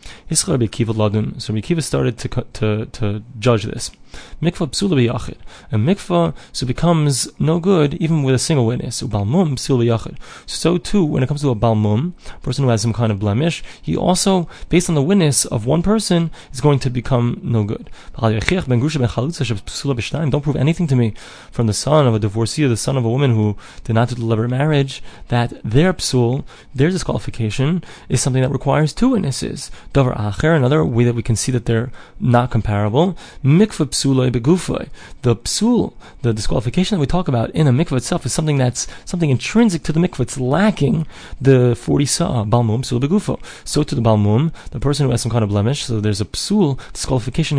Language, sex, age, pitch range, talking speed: English, male, 20-39, 115-160 Hz, 190 wpm